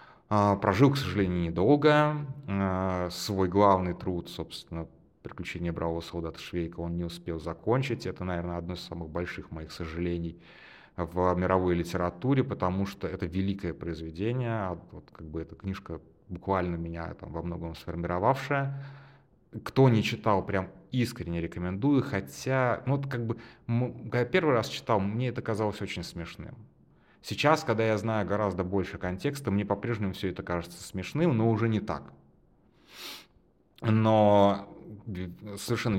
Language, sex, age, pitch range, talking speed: Russian, male, 30-49, 90-110 Hz, 135 wpm